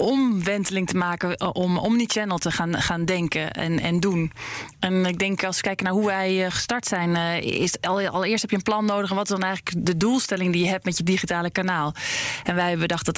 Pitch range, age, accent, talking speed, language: 170-200 Hz, 20-39, Dutch, 230 wpm, Dutch